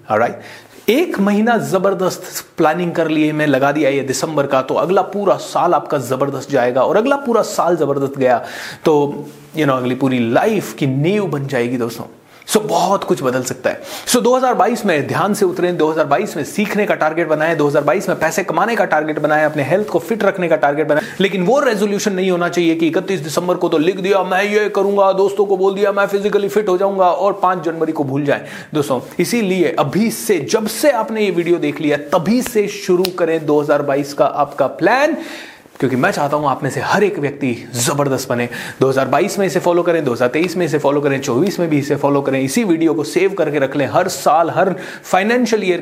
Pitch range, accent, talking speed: 140-195 Hz, native, 210 wpm